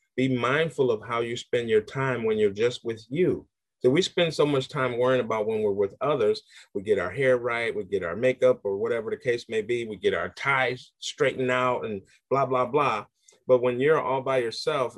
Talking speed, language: 225 wpm, English